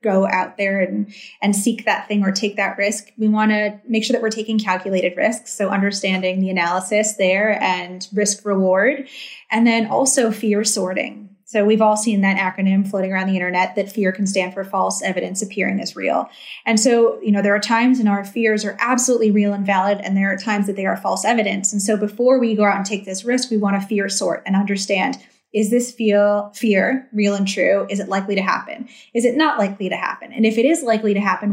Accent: American